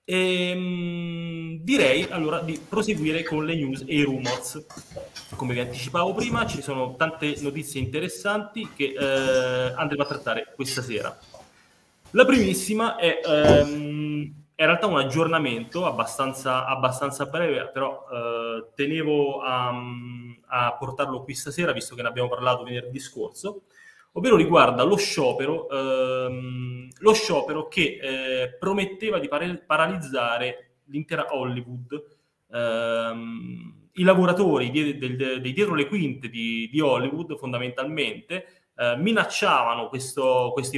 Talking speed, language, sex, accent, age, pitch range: 125 wpm, Italian, male, native, 30-49, 125-165 Hz